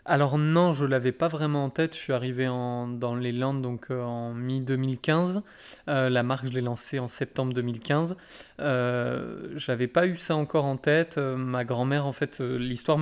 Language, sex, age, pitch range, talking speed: French, male, 20-39, 125-145 Hz, 205 wpm